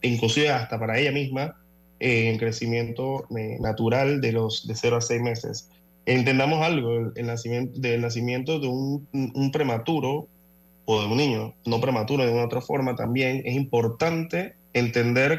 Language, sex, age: Spanish, male, 20-39